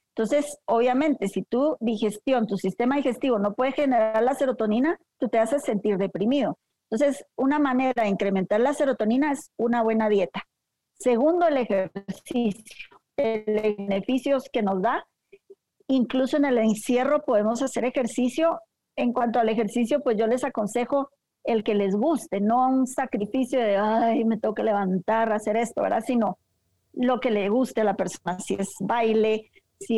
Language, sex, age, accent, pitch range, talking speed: Spanish, female, 40-59, American, 215-265 Hz, 160 wpm